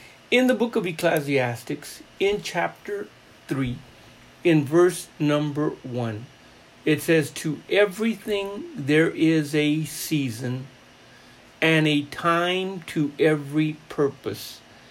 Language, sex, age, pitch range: English, male, 50-69, 145-190 Hz